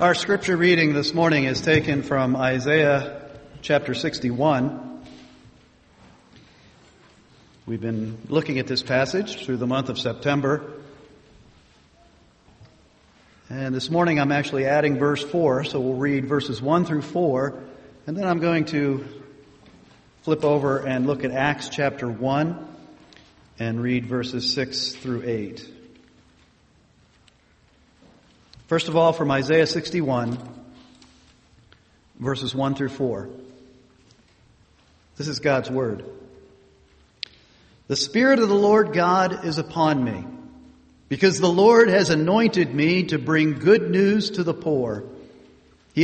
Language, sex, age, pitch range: English, male, 40-59, 130-165 Hz